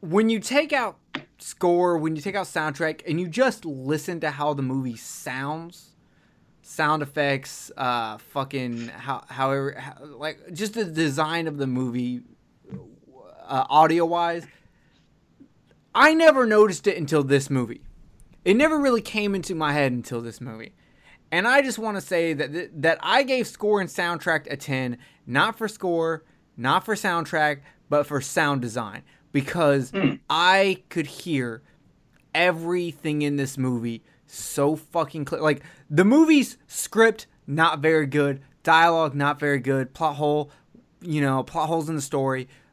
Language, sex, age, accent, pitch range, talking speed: English, male, 20-39, American, 140-190 Hz, 150 wpm